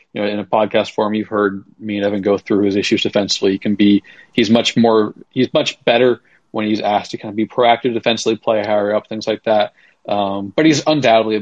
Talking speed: 235 wpm